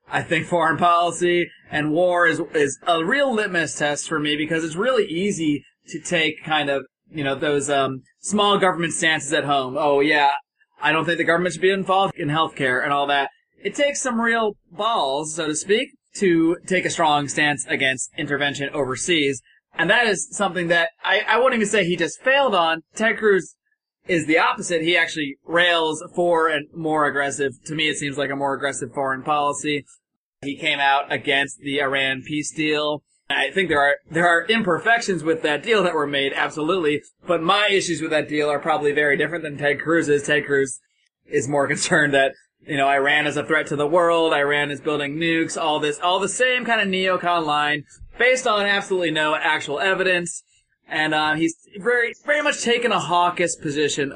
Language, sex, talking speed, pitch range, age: English, male, 195 wpm, 145-180 Hz, 20-39